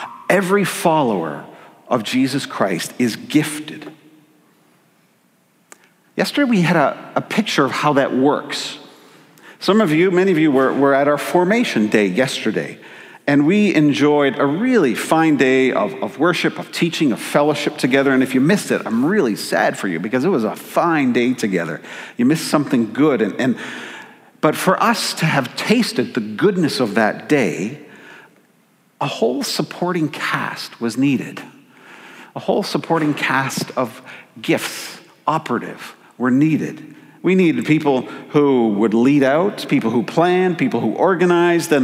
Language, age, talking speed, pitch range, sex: English, 50-69, 150 wpm, 135-180 Hz, male